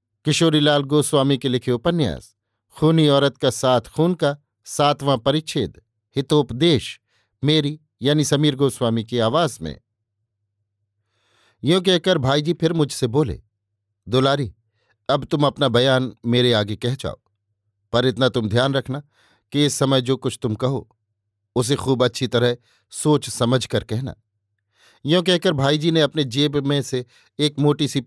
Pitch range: 110-145 Hz